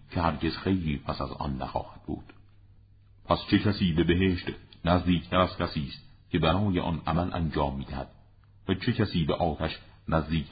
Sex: male